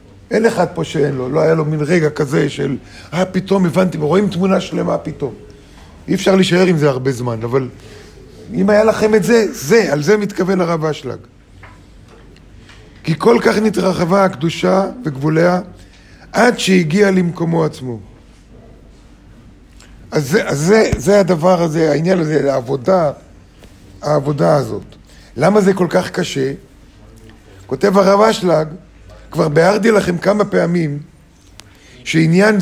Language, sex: Hebrew, male